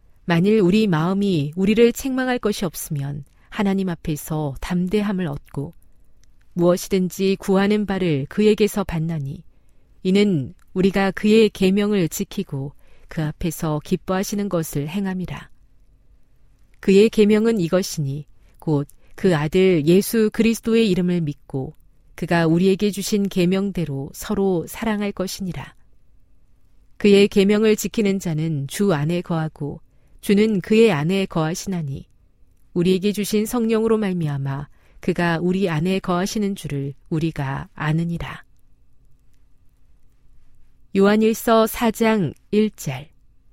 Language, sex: Korean, female